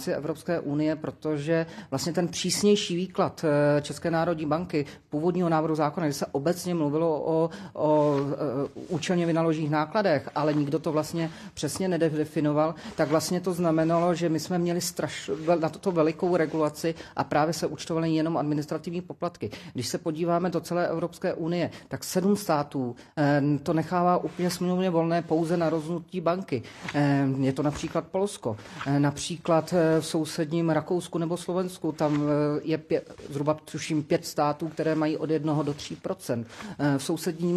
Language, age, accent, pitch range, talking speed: Czech, 40-59, native, 155-175 Hz, 145 wpm